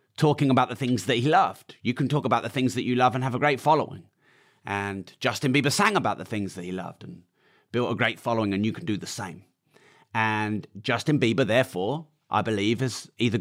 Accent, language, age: British, English, 30-49